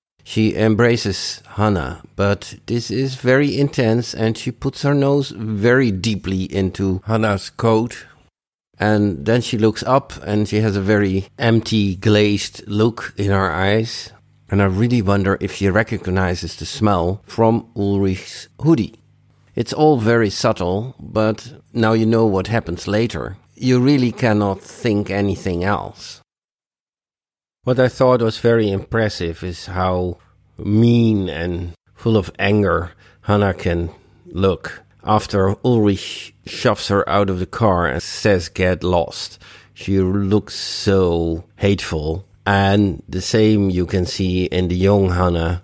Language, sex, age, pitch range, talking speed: English, male, 50-69, 90-110 Hz, 140 wpm